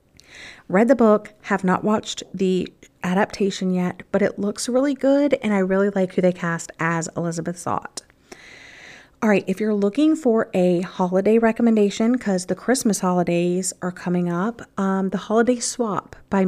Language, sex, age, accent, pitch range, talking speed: English, female, 40-59, American, 180-230 Hz, 165 wpm